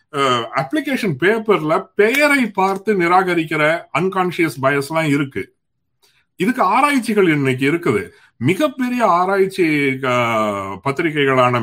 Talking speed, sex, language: 55 wpm, male, Tamil